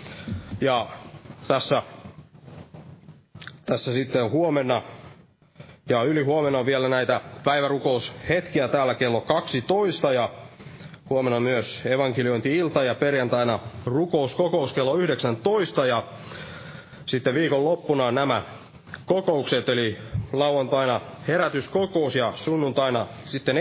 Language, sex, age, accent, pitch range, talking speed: Finnish, male, 30-49, native, 125-160 Hz, 90 wpm